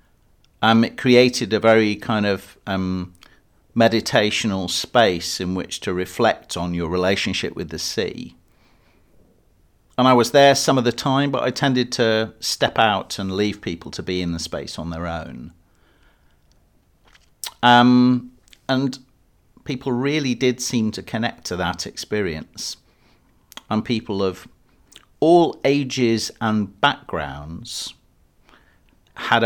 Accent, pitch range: British, 90-120 Hz